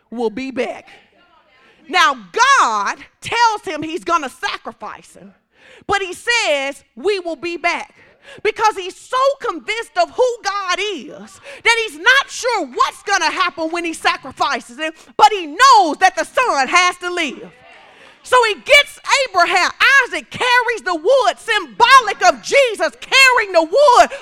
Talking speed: 150 wpm